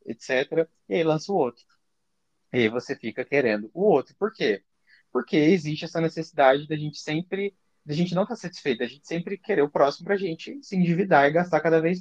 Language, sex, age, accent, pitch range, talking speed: Portuguese, male, 20-39, Brazilian, 135-175 Hz, 210 wpm